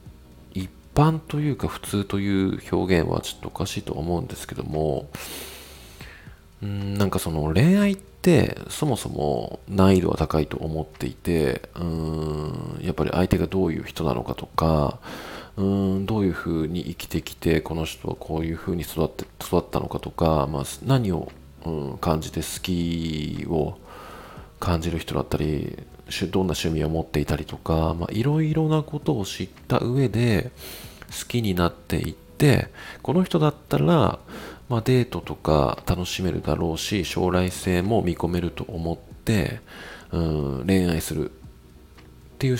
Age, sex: 40-59, male